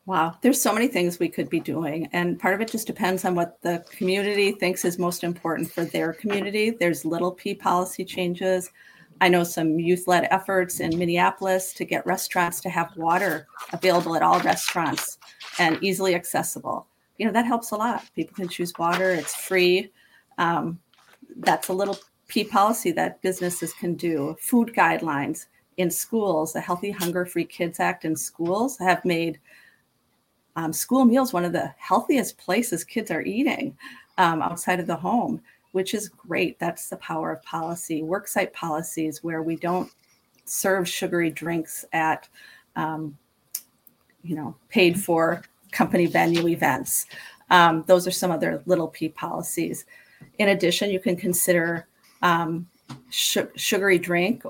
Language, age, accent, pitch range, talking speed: English, 40-59, American, 170-195 Hz, 160 wpm